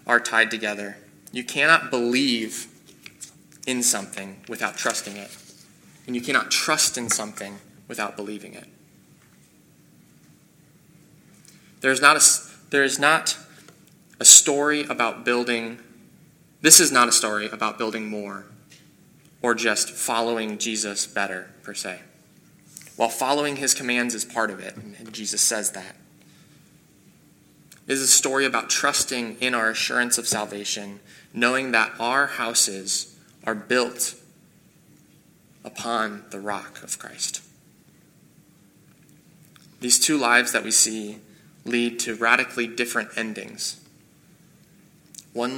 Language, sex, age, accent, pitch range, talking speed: English, male, 20-39, American, 110-150 Hz, 115 wpm